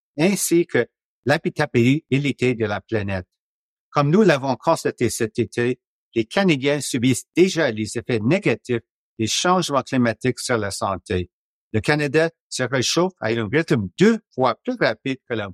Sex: male